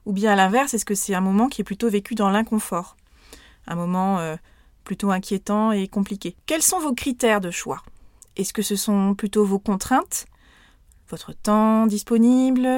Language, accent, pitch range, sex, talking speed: French, French, 200-250 Hz, female, 180 wpm